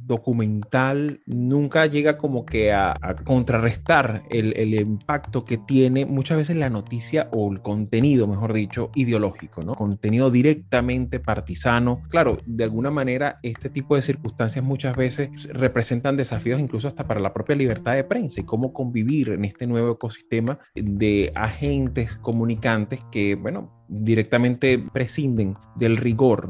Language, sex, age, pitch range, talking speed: Spanish, male, 30-49, 110-130 Hz, 145 wpm